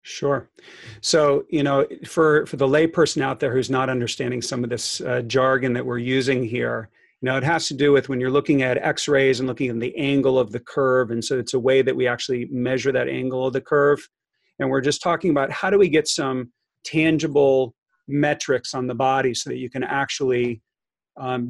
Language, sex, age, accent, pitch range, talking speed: English, male, 40-59, American, 125-145 Hz, 215 wpm